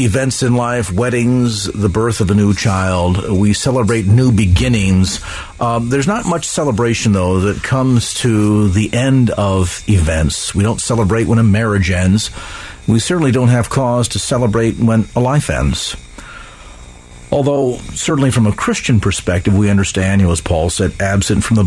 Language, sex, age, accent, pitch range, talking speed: English, male, 50-69, American, 95-125 Hz, 170 wpm